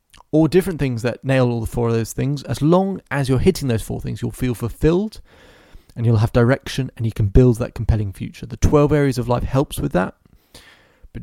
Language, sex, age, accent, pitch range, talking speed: English, male, 30-49, British, 110-140 Hz, 225 wpm